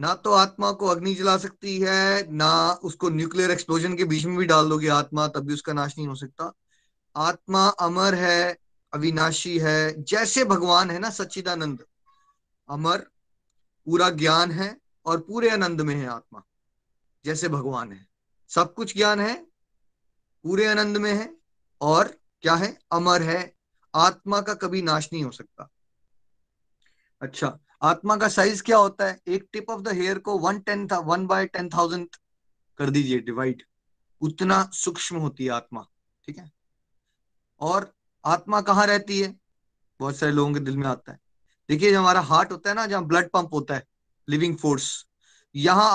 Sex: male